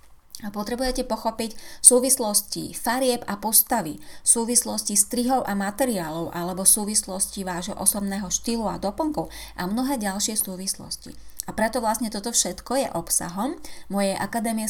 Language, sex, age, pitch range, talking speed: Slovak, female, 30-49, 180-230 Hz, 125 wpm